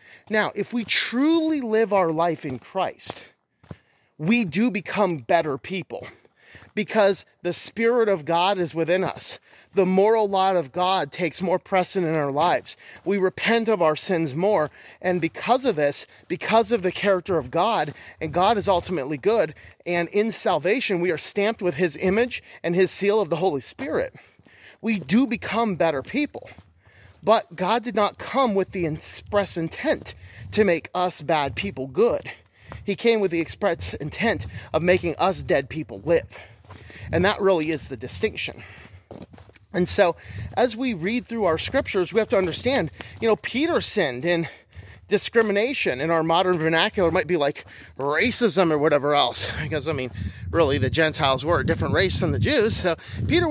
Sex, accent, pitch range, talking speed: male, American, 155-215 Hz, 170 wpm